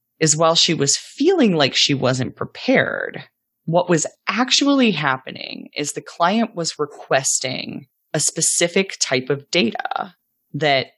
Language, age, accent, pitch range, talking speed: English, 30-49, American, 150-225 Hz, 130 wpm